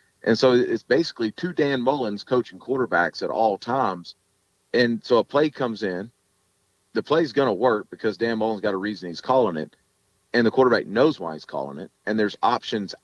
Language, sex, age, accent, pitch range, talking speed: English, male, 40-59, American, 105-135 Hz, 200 wpm